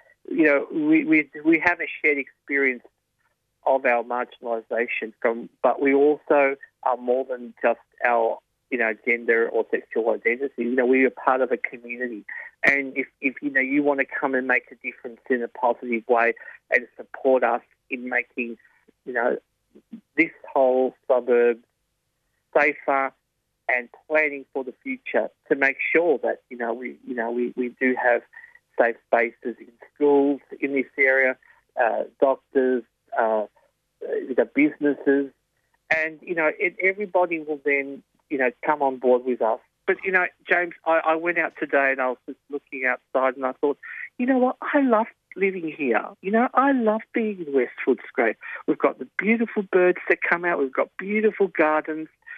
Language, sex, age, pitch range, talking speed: English, male, 40-59, 130-190 Hz, 175 wpm